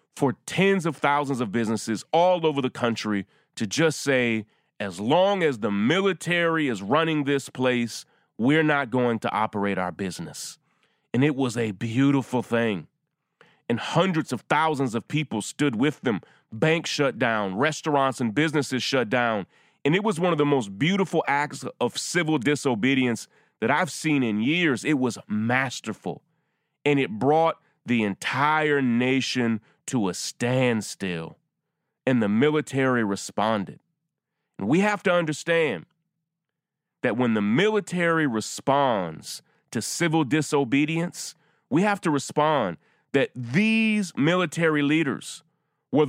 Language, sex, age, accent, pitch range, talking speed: English, male, 30-49, American, 125-165 Hz, 140 wpm